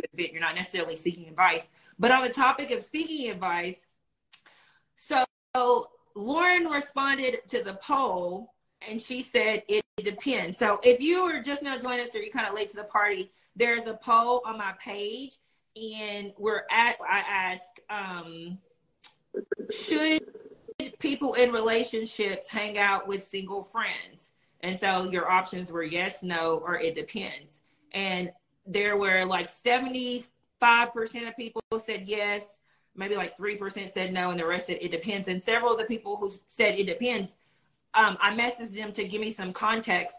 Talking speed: 165 wpm